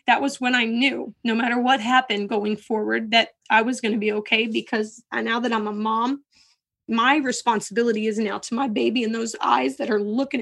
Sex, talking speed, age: female, 215 wpm, 20-39